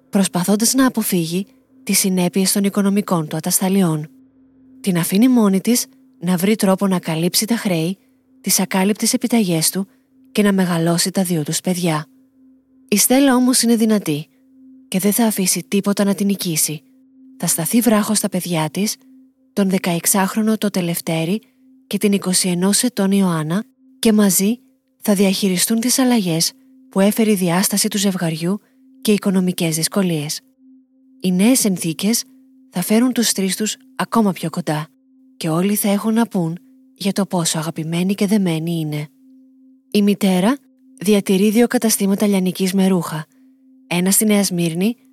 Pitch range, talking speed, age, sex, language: 180-255 Hz, 155 wpm, 20-39, female, Greek